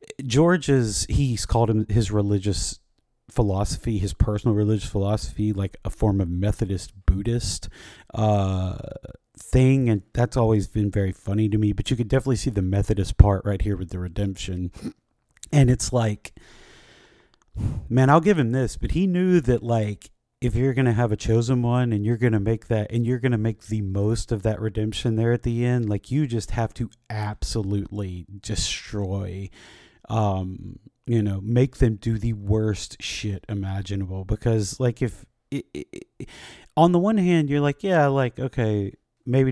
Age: 30-49